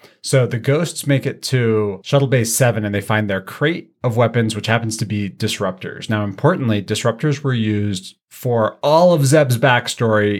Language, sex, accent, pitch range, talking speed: English, male, American, 105-125 Hz, 180 wpm